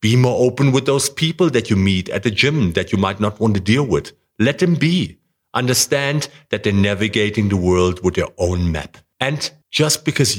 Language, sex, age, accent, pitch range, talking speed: English, male, 50-69, German, 95-130 Hz, 210 wpm